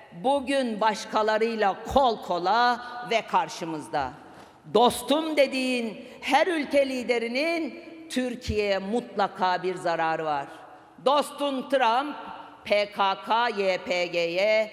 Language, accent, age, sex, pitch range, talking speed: Turkish, native, 50-69, female, 190-265 Hz, 75 wpm